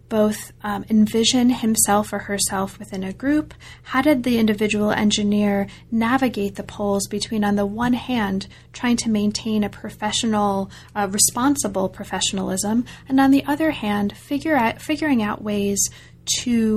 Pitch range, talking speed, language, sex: 200-230 Hz, 145 wpm, English, female